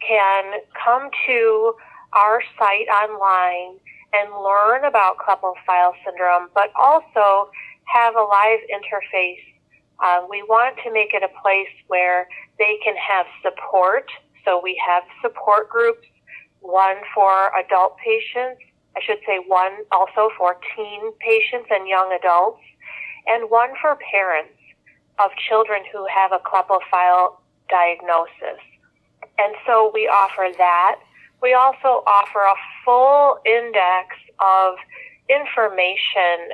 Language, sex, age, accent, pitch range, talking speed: English, female, 40-59, American, 185-225 Hz, 120 wpm